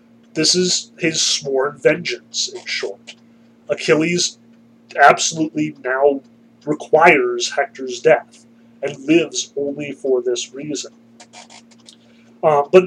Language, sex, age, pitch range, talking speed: English, male, 30-49, 120-185 Hz, 100 wpm